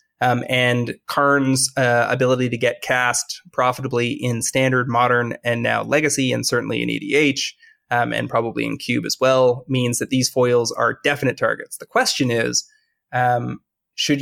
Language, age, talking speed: English, 20-39, 160 wpm